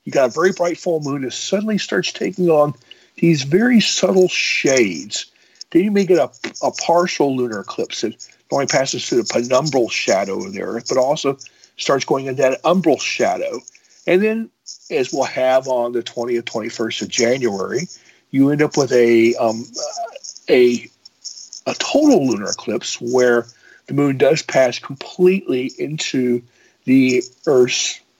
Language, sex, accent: English, male, American